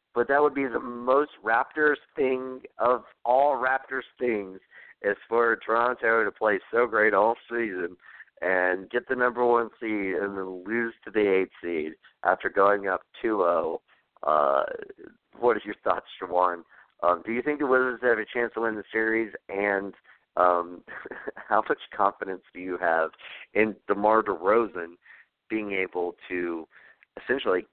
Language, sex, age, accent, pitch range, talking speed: English, male, 50-69, American, 95-145 Hz, 160 wpm